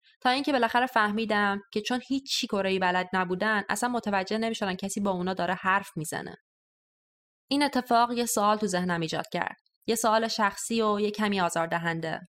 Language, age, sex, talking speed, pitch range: Persian, 20-39, female, 175 wpm, 185-230 Hz